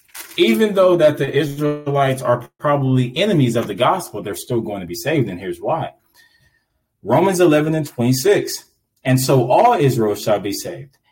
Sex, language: male, English